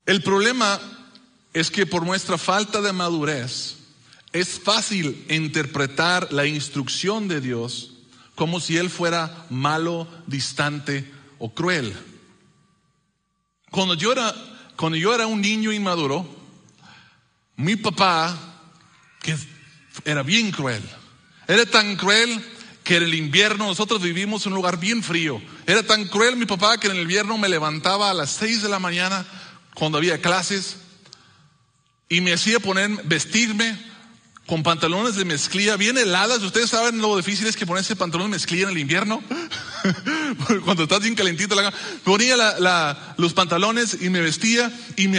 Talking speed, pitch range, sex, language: 150 wpm, 160-215 Hz, male, English